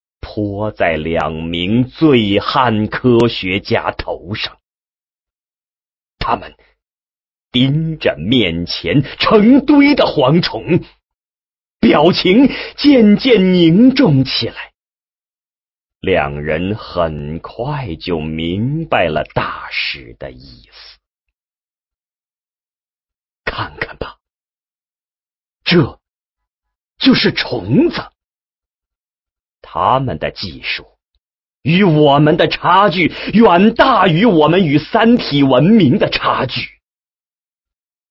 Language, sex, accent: English, male, Chinese